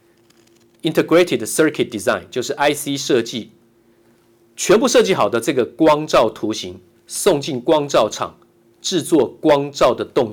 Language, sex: Chinese, male